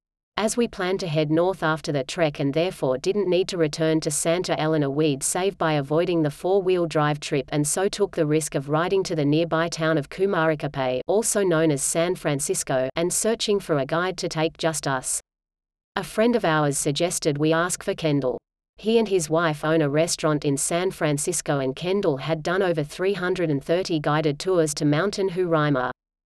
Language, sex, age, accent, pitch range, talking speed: English, female, 40-59, Australian, 150-185 Hz, 190 wpm